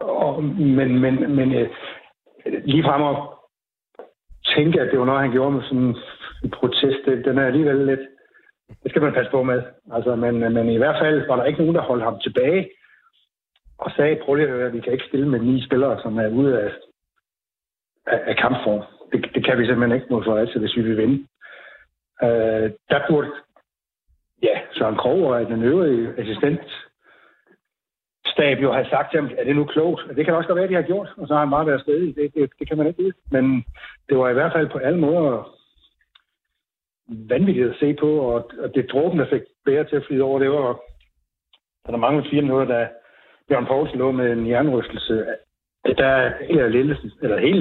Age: 60-79